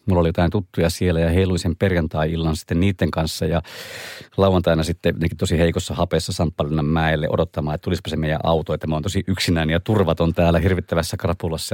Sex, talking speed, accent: male, 170 wpm, native